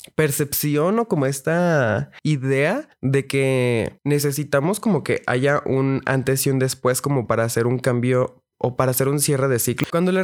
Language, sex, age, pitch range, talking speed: Spanish, male, 20-39, 125-150 Hz, 175 wpm